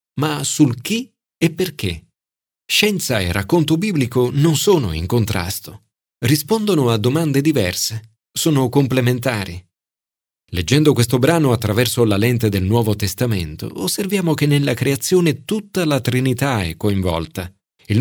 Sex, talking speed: male, 125 wpm